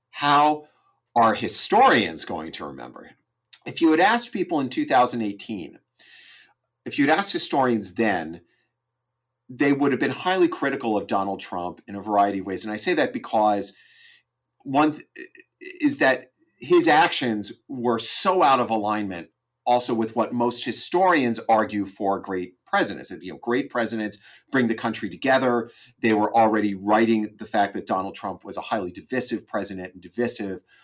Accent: American